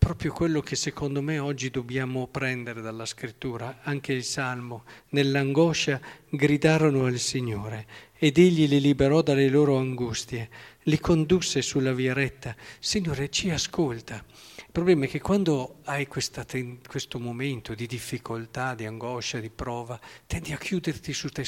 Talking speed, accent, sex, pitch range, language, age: 145 wpm, native, male, 120-155 Hz, Italian, 50-69